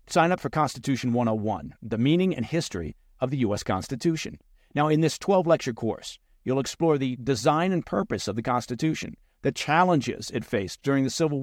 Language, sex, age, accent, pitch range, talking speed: English, male, 50-69, American, 115-165 Hz, 185 wpm